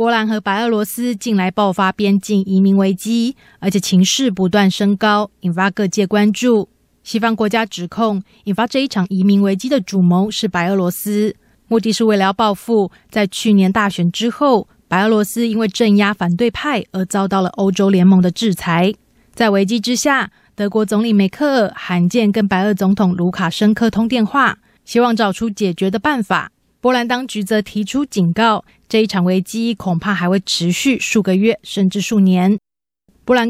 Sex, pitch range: female, 195-230 Hz